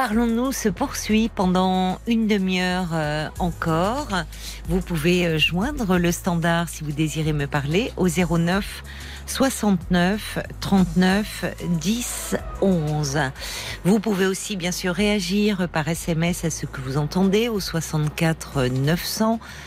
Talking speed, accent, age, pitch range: 120 wpm, French, 50-69, 155-195 Hz